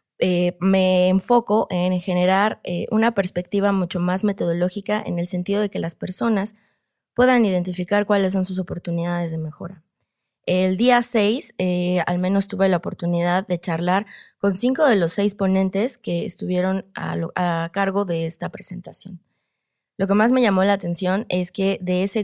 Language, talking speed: Spanish, 170 wpm